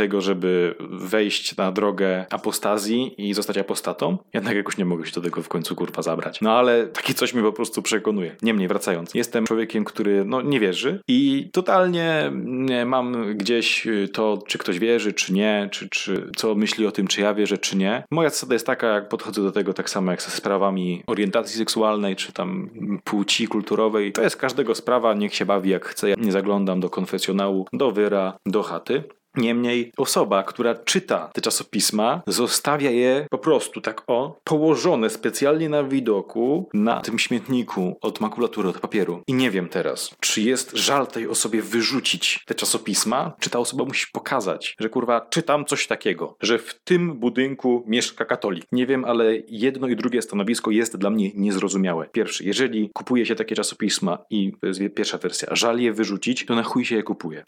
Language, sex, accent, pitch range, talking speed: Polish, male, native, 100-125 Hz, 185 wpm